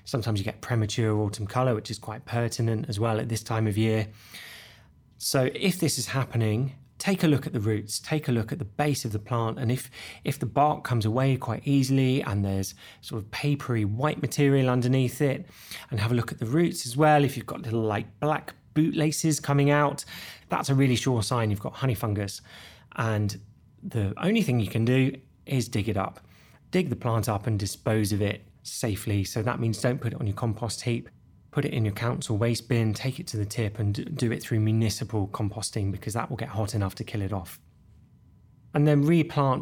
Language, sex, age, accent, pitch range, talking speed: English, male, 20-39, British, 110-135 Hz, 215 wpm